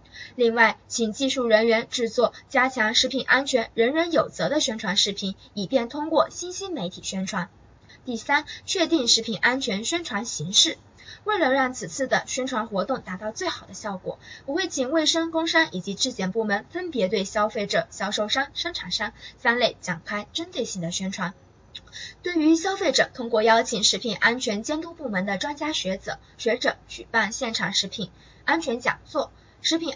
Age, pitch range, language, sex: 10-29, 205-295 Hz, Chinese, female